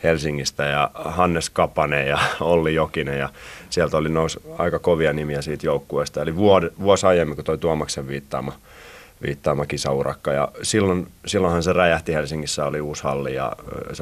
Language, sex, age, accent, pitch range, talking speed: Finnish, male, 30-49, native, 75-90 Hz, 155 wpm